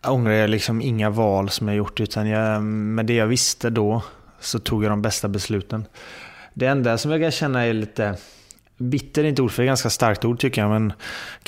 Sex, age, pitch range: male, 20-39, 105-120 Hz